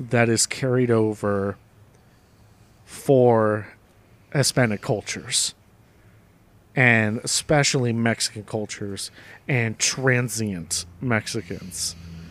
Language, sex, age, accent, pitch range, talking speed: English, male, 40-59, American, 105-125 Hz, 70 wpm